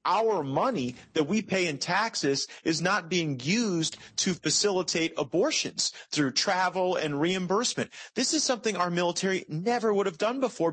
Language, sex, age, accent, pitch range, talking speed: English, male, 30-49, American, 150-195 Hz, 155 wpm